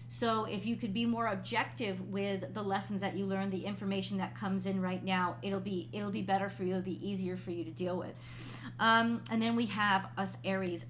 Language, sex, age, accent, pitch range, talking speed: English, female, 30-49, American, 190-230 Hz, 230 wpm